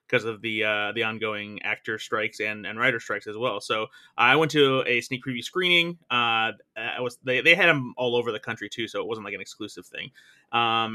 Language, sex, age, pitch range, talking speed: English, male, 20-39, 115-135 Hz, 230 wpm